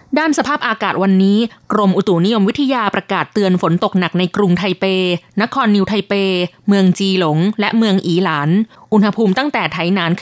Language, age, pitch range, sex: Thai, 20-39, 180-225 Hz, female